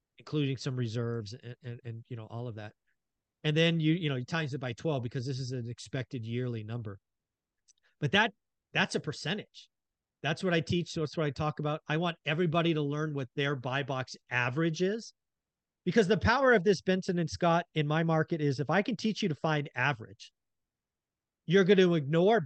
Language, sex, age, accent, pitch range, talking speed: English, male, 40-59, American, 135-180 Hz, 210 wpm